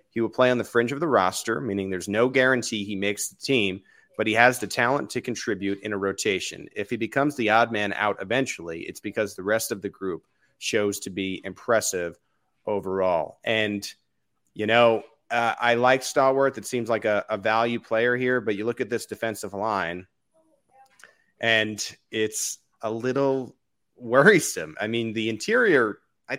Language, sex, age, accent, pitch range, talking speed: English, male, 30-49, American, 100-120 Hz, 180 wpm